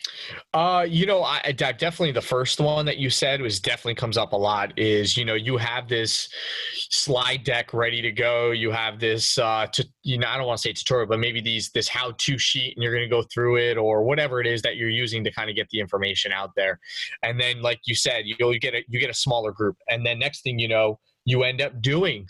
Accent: American